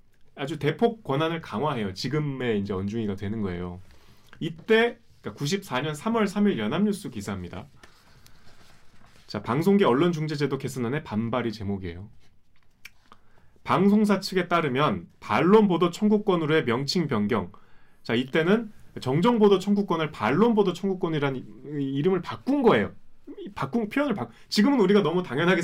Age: 30-49